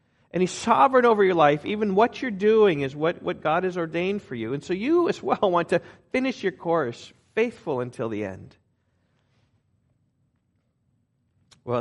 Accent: American